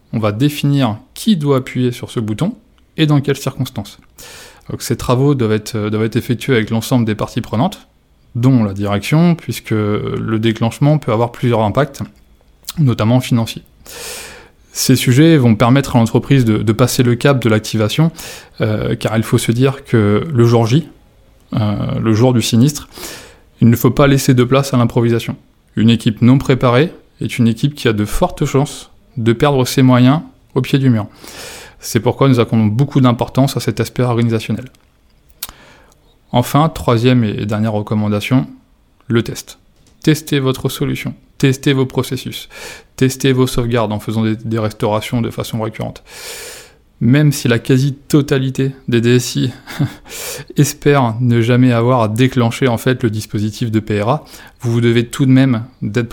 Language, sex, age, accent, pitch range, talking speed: French, male, 20-39, French, 115-135 Hz, 160 wpm